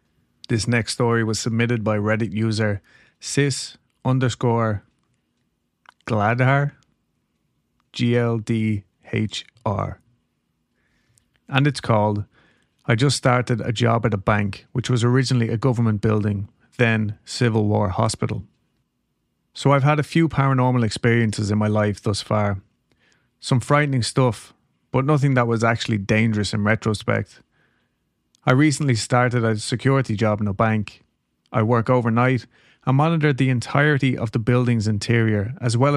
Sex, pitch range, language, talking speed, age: male, 110-125 Hz, English, 130 wpm, 30-49